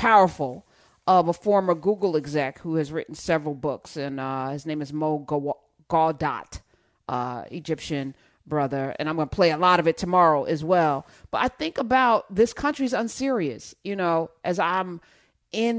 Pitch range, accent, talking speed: 180-270 Hz, American, 170 wpm